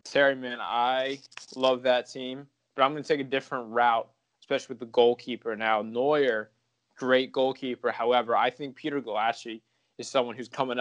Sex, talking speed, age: male, 170 wpm, 20-39